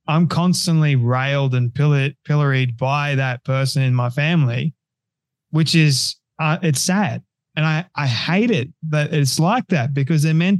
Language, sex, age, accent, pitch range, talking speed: English, male, 20-39, Australian, 140-165 Hz, 160 wpm